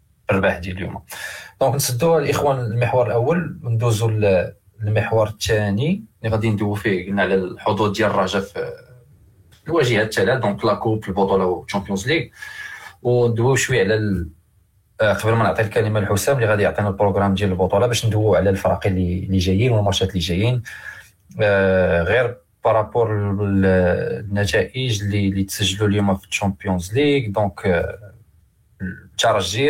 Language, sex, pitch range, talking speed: Arabic, male, 95-115 Hz, 130 wpm